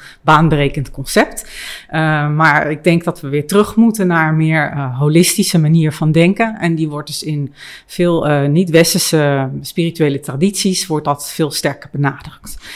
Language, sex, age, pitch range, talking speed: Dutch, female, 40-59, 150-180 Hz, 160 wpm